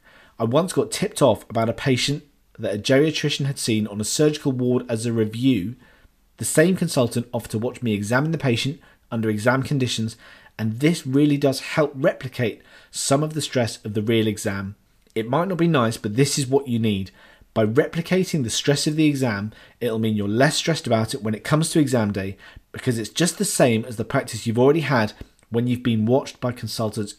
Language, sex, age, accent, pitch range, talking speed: English, male, 40-59, British, 110-140 Hz, 210 wpm